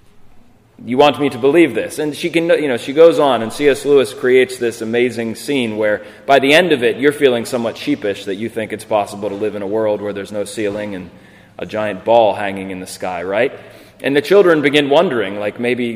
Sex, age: male, 30-49